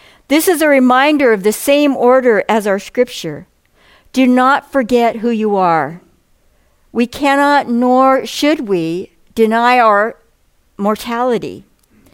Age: 60-79